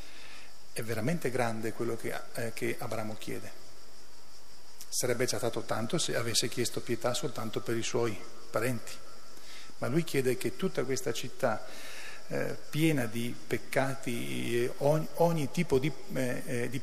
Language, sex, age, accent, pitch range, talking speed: Italian, male, 40-59, native, 120-145 Hz, 145 wpm